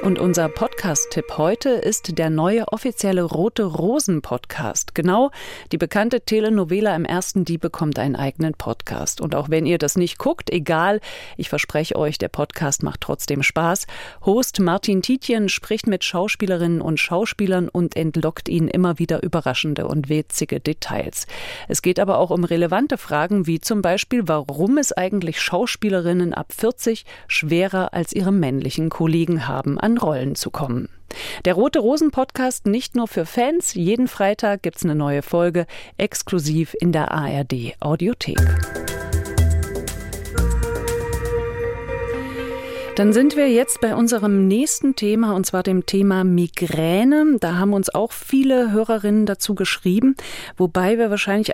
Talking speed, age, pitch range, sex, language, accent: 140 wpm, 40-59, 160-220 Hz, female, German, German